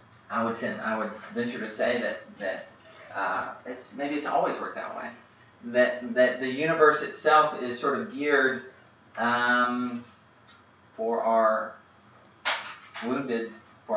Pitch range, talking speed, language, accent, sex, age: 115-160 Hz, 135 wpm, English, American, male, 30-49